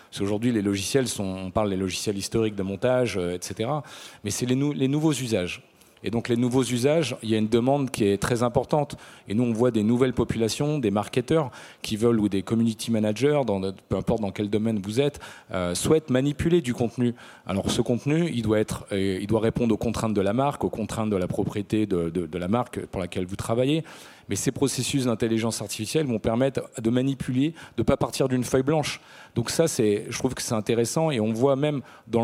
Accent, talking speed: French, 225 wpm